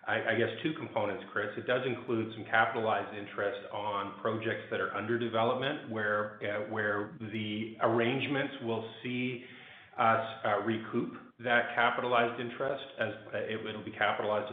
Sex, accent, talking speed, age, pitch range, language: male, American, 150 wpm, 40-59, 105-120 Hz, English